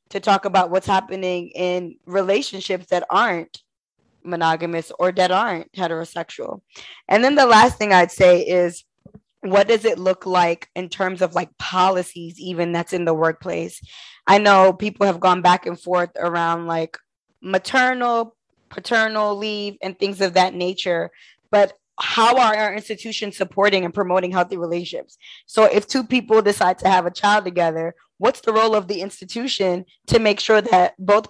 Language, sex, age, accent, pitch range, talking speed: English, female, 20-39, American, 180-210 Hz, 165 wpm